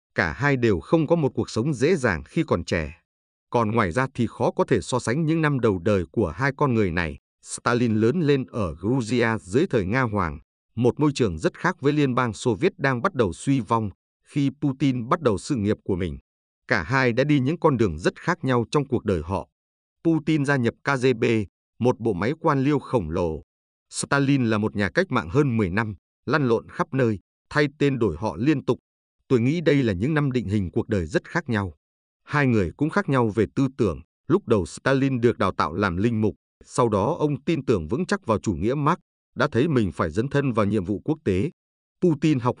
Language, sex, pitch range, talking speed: Vietnamese, male, 95-140 Hz, 225 wpm